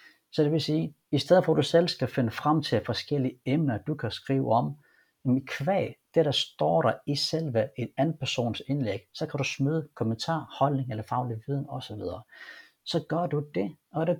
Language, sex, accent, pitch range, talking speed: Danish, male, native, 115-150 Hz, 205 wpm